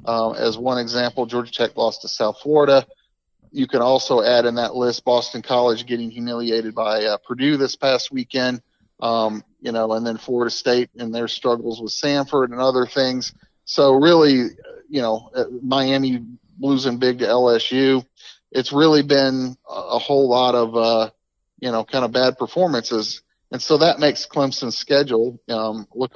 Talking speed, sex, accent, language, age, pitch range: 165 wpm, male, American, English, 40-59, 115-135 Hz